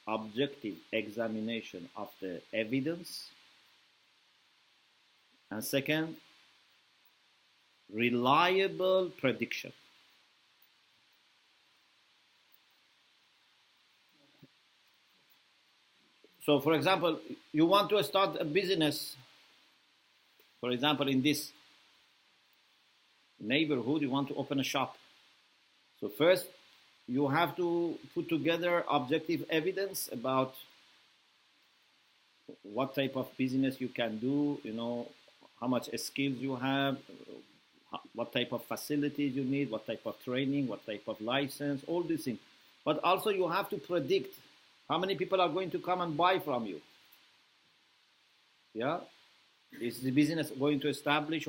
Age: 50-69